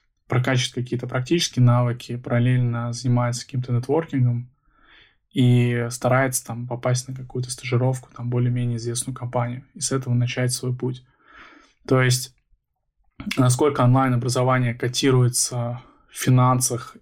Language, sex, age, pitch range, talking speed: Russian, male, 20-39, 120-130 Hz, 105 wpm